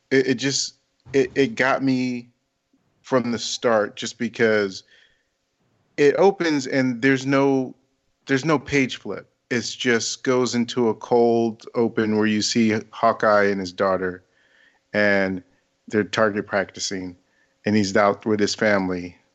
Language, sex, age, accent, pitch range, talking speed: English, male, 40-59, American, 105-130 Hz, 135 wpm